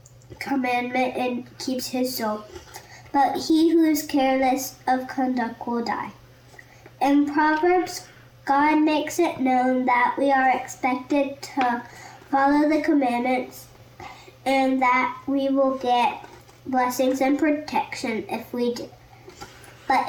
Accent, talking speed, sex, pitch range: American, 120 wpm, male, 235-305 Hz